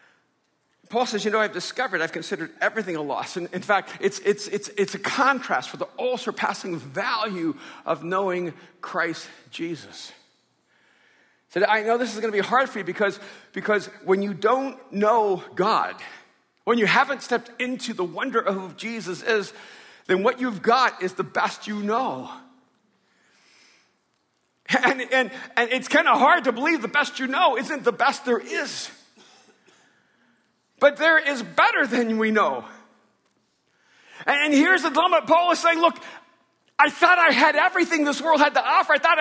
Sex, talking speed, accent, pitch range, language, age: male, 170 wpm, American, 210-315 Hz, English, 50-69